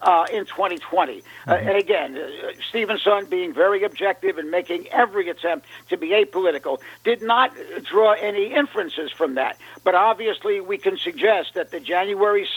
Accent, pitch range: American, 180-270 Hz